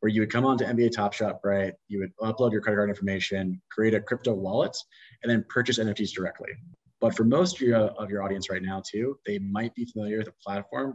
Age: 30-49